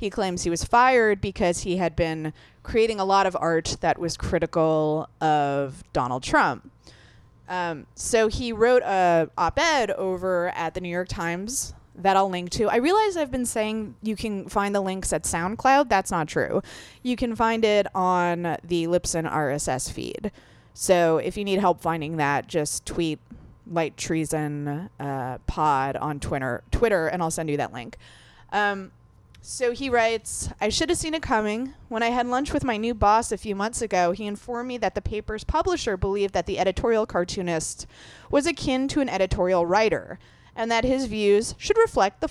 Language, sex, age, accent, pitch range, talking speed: English, female, 20-39, American, 165-235 Hz, 185 wpm